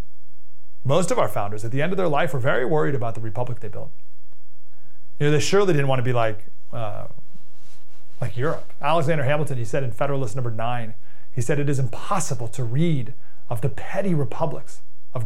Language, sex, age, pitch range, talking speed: English, male, 30-49, 130-160 Hz, 195 wpm